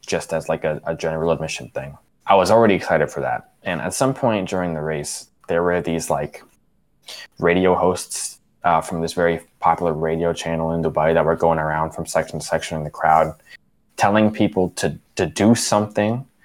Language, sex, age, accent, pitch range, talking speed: English, male, 20-39, American, 80-100 Hz, 195 wpm